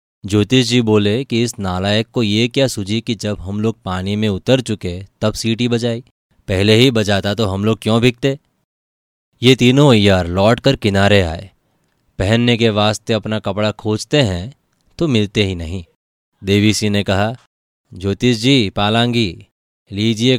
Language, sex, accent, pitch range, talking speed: Hindi, male, native, 95-115 Hz, 160 wpm